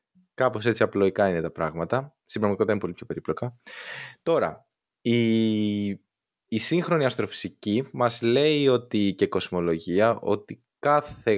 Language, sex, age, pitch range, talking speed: Greek, male, 20-39, 95-130 Hz, 120 wpm